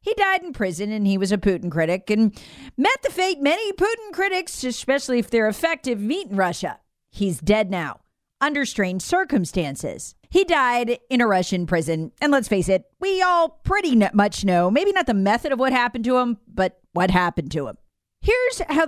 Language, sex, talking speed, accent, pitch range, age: English, female, 195 wpm, American, 185-295 Hz, 40-59